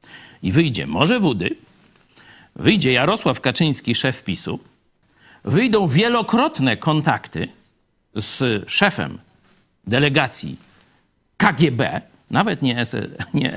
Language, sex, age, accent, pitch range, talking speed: Polish, male, 50-69, native, 100-150 Hz, 75 wpm